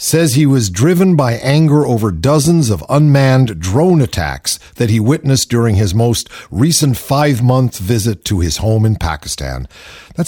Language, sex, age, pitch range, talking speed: English, male, 50-69, 105-145 Hz, 160 wpm